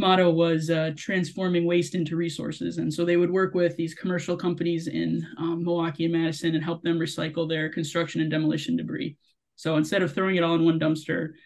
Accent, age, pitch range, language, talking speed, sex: American, 20-39, 165-185 Hz, English, 205 wpm, male